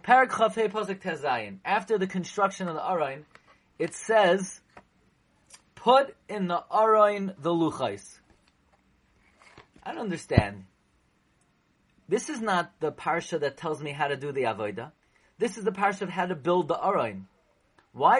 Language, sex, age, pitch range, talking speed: English, male, 30-49, 150-210 Hz, 145 wpm